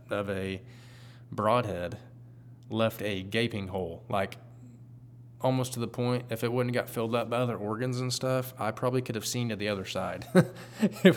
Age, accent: 20-39, American